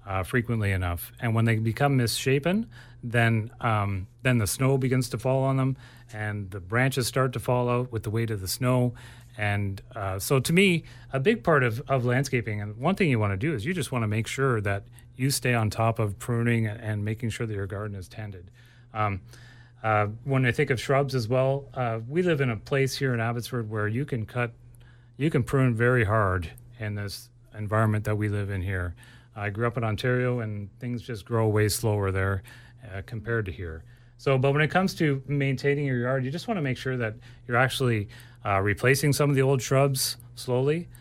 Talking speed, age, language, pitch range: 215 wpm, 30-49, English, 110-130 Hz